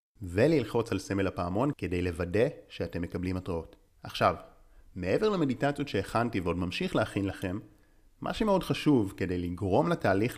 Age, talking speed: 30-49, 135 wpm